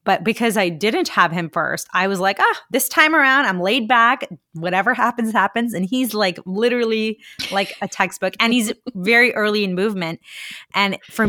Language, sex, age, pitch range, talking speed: English, female, 20-39, 175-230 Hz, 190 wpm